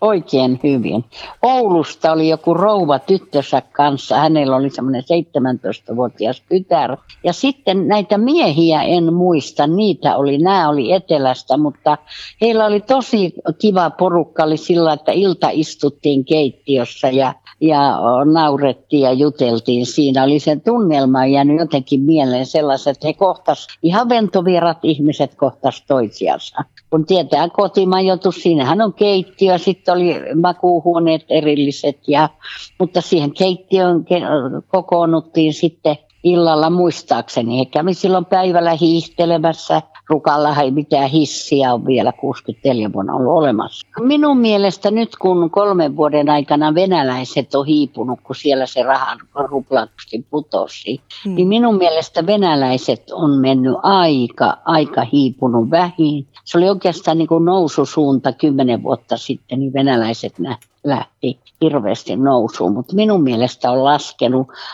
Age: 60-79